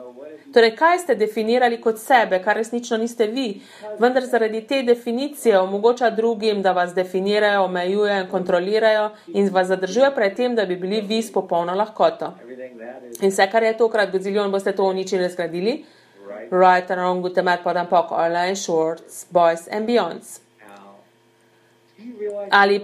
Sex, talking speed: female, 120 wpm